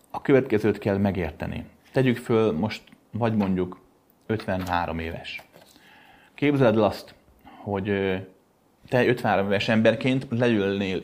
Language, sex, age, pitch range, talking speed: Hungarian, male, 30-49, 100-135 Hz, 105 wpm